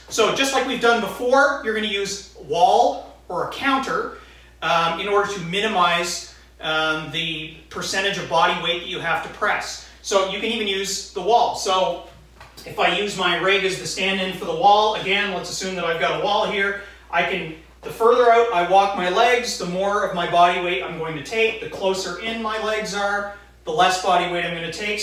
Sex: male